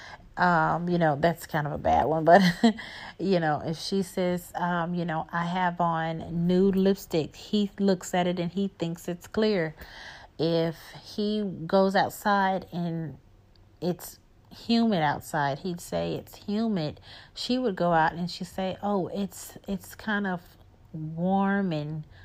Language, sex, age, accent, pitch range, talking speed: English, female, 40-59, American, 155-195 Hz, 155 wpm